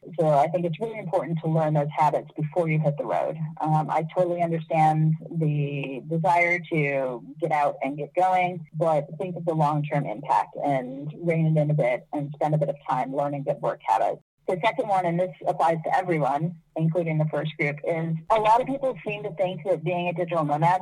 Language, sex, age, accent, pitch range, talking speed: English, female, 30-49, American, 155-185 Hz, 215 wpm